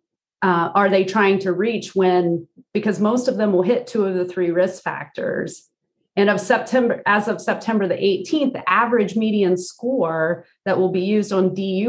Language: English